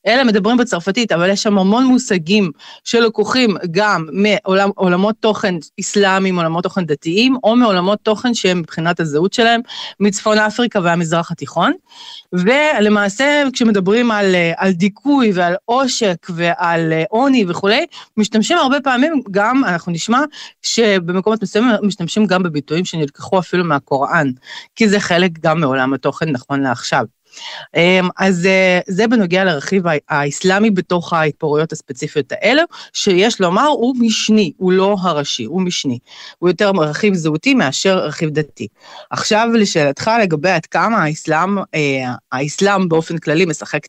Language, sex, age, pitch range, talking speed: Hebrew, female, 30-49, 160-215 Hz, 130 wpm